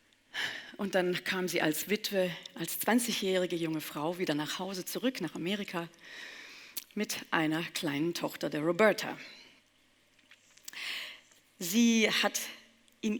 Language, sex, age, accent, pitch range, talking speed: German, female, 40-59, German, 165-230 Hz, 115 wpm